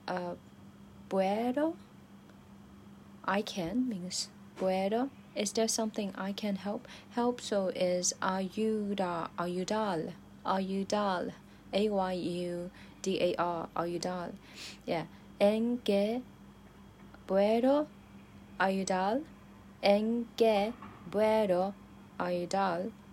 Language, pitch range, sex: Chinese, 170-210 Hz, female